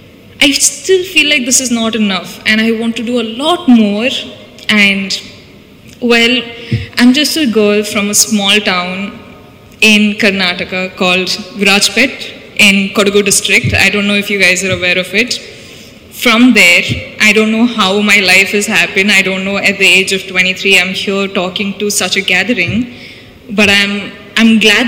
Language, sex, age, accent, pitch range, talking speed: Hindi, female, 20-39, native, 195-225 Hz, 175 wpm